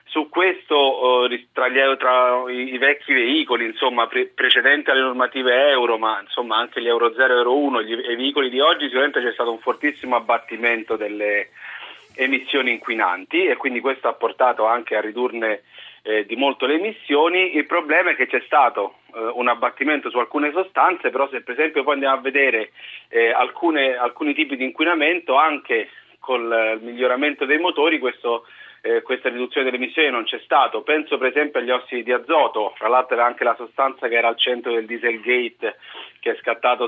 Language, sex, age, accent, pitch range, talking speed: Italian, male, 40-59, native, 120-155 Hz, 180 wpm